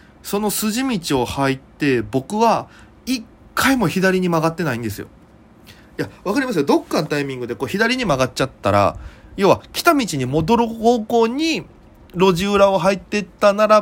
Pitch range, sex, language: 120-195 Hz, male, Japanese